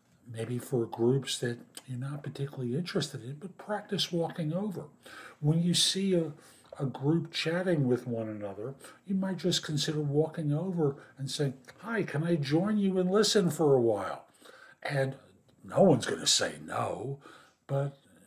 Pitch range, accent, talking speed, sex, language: 130-170 Hz, American, 160 wpm, male, English